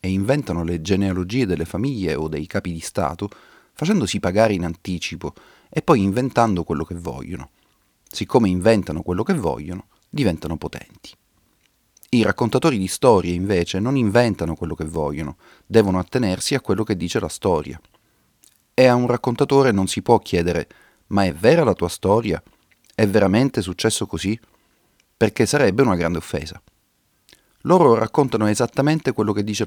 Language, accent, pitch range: Italian, native, 85-115 Hz